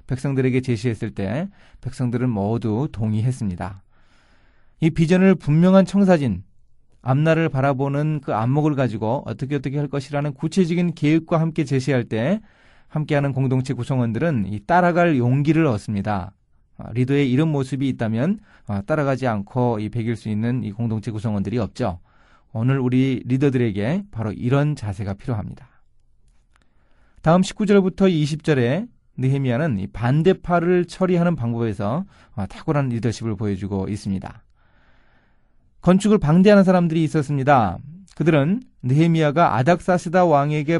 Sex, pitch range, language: male, 115-165 Hz, Korean